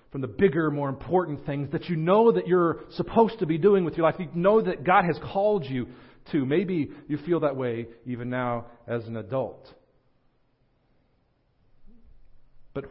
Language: English